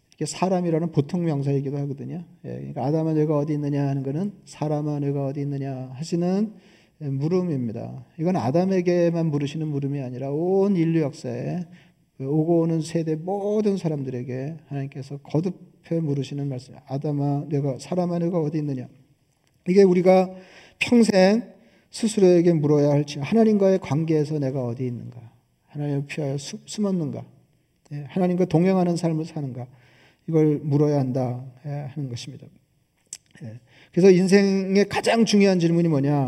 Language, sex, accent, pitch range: Korean, male, native, 135-170 Hz